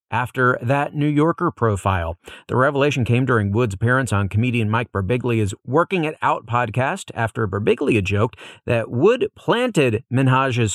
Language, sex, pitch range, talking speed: English, male, 110-150 Hz, 145 wpm